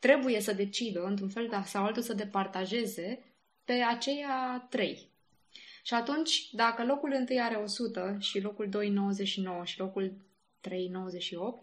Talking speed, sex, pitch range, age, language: 130 wpm, female, 195-245 Hz, 20-39, Romanian